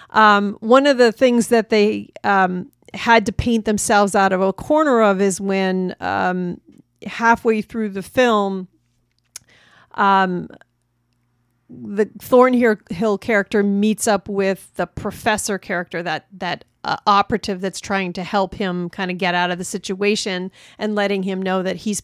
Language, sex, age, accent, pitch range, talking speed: English, female, 40-59, American, 190-225 Hz, 150 wpm